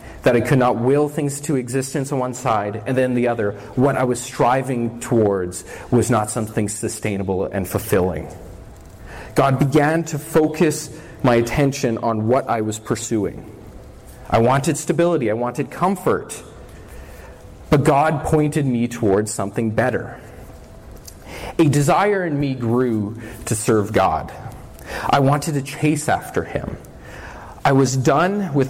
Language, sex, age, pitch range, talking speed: English, male, 30-49, 110-145 Hz, 140 wpm